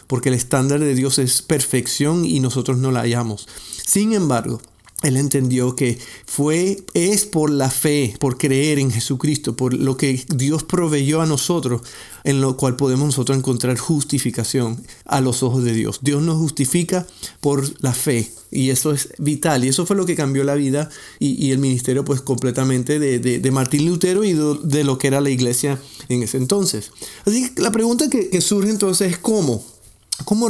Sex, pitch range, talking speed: male, 130-175 Hz, 185 wpm